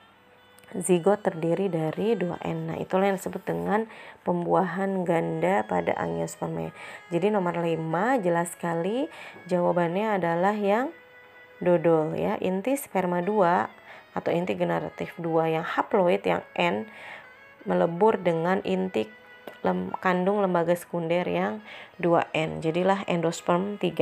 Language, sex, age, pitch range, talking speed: Indonesian, female, 20-39, 170-205 Hz, 110 wpm